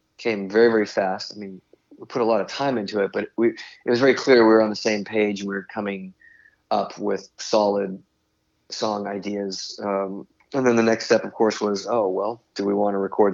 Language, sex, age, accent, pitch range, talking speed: English, male, 30-49, American, 95-115 Hz, 225 wpm